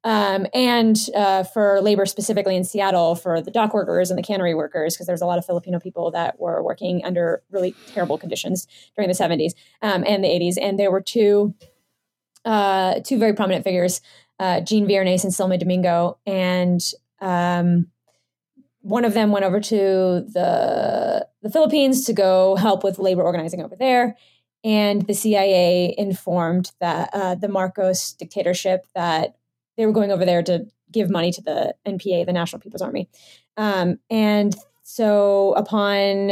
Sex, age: female, 20-39